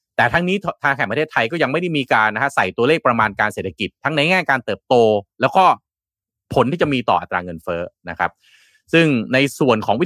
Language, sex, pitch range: Thai, male, 110-145 Hz